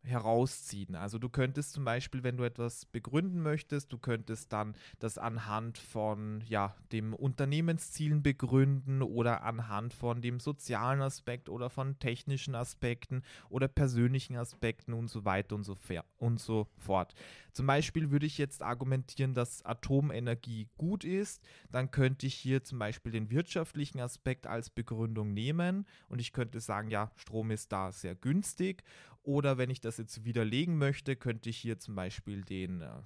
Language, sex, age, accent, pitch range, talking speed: German, male, 30-49, German, 105-135 Hz, 160 wpm